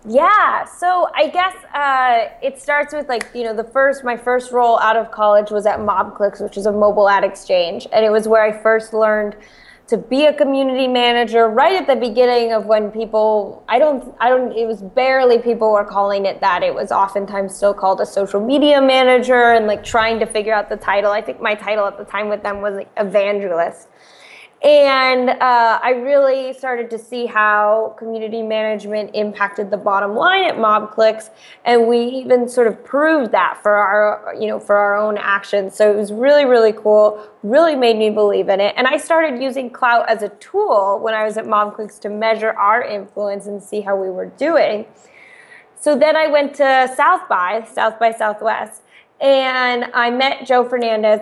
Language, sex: English, female